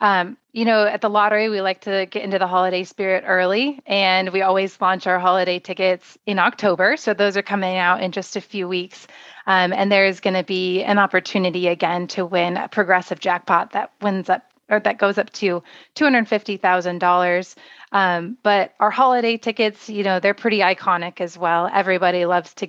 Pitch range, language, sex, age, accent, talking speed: 185-215 Hz, English, female, 30-49, American, 190 wpm